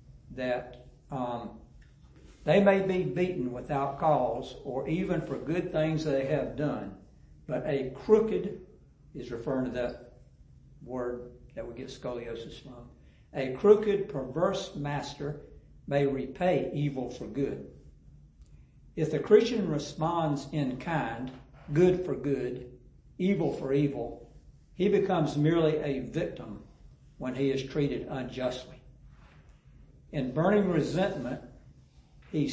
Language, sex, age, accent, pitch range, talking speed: English, male, 60-79, American, 125-170 Hz, 120 wpm